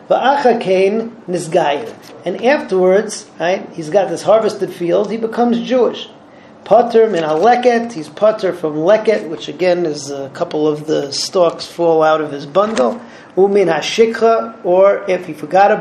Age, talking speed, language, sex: 40-59, 125 wpm, English, male